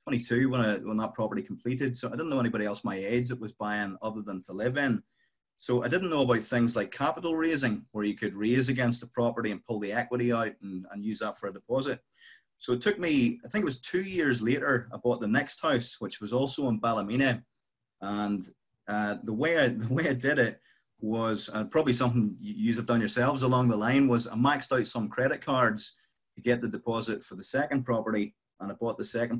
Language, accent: English, British